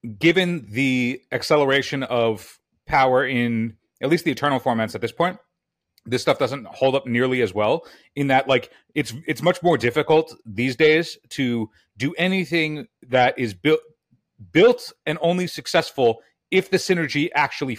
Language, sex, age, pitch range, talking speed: English, male, 30-49, 130-170 Hz, 155 wpm